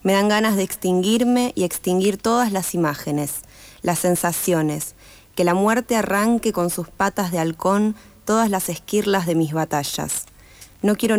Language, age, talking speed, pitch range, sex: Spanish, 20-39, 155 wpm, 170-200 Hz, female